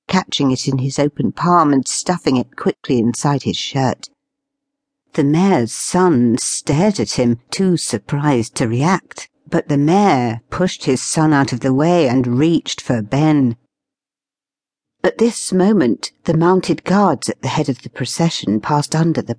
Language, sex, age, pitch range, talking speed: English, female, 60-79, 125-170 Hz, 160 wpm